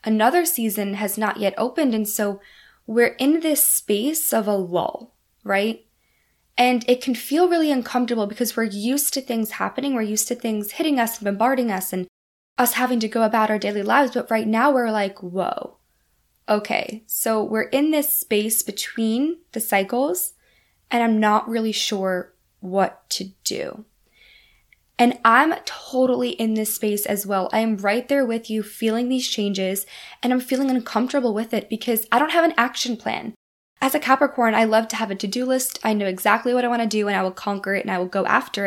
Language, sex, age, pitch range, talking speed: English, female, 10-29, 205-250 Hz, 195 wpm